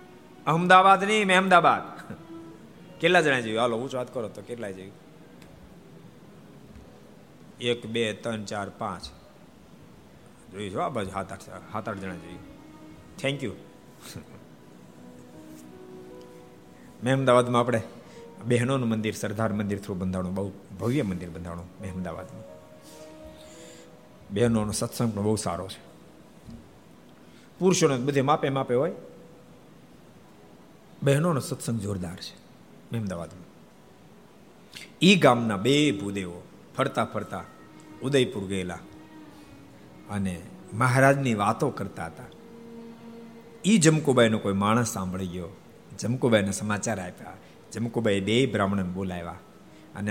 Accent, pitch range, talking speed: native, 95-125 Hz, 65 wpm